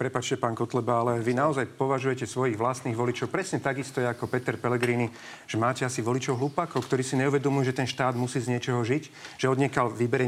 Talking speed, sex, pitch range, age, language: 200 wpm, male, 120-140 Hz, 40-59, Slovak